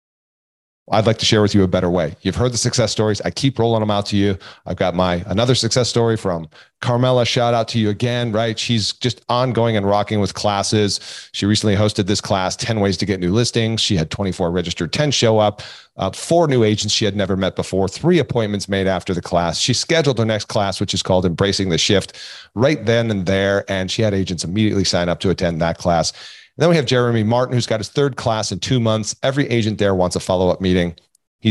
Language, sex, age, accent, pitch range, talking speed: English, male, 40-59, American, 95-115 Hz, 230 wpm